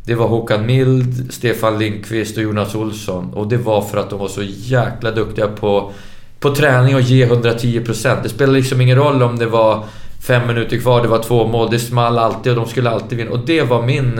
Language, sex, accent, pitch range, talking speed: Swedish, male, native, 105-120 Hz, 220 wpm